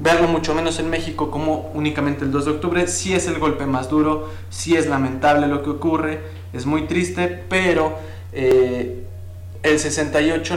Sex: male